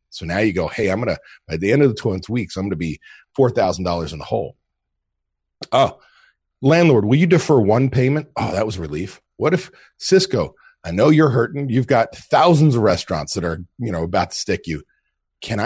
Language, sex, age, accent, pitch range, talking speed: English, male, 40-59, American, 95-140 Hz, 220 wpm